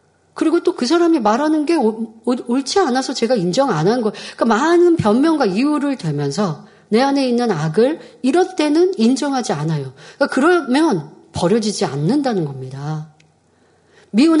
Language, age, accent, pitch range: Korean, 40-59, native, 180-265 Hz